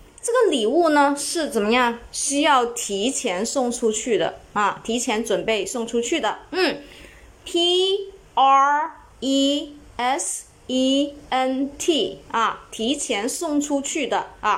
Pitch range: 250-330 Hz